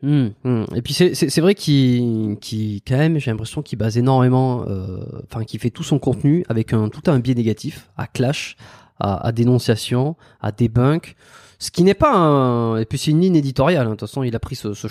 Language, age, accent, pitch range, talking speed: French, 20-39, French, 115-160 Hz, 230 wpm